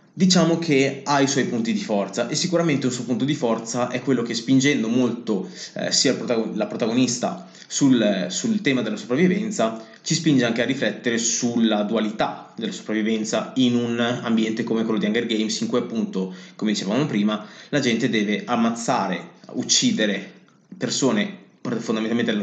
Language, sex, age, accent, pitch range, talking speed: Italian, male, 20-39, native, 110-185 Hz, 160 wpm